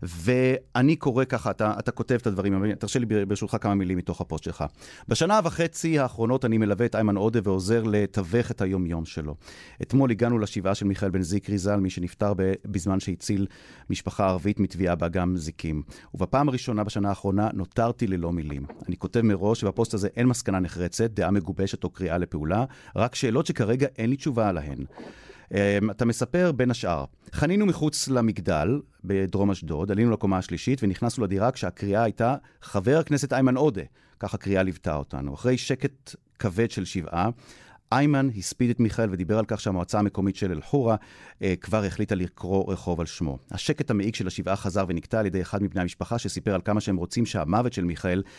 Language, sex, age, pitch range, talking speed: Hebrew, male, 30-49, 95-120 Hz, 170 wpm